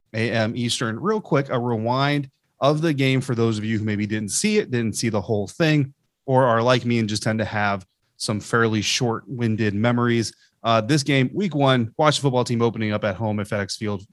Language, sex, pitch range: English, male, 110-135 Hz